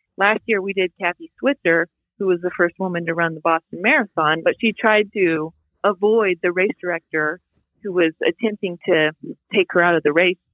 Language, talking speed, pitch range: English, 195 wpm, 170-205 Hz